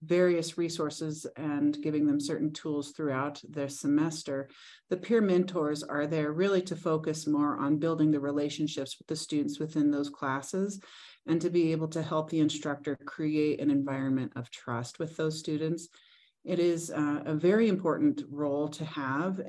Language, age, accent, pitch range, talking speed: English, 40-59, American, 145-165 Hz, 165 wpm